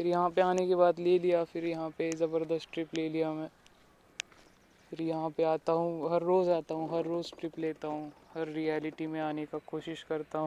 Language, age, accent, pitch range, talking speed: Marathi, 20-39, native, 145-175 Hz, 210 wpm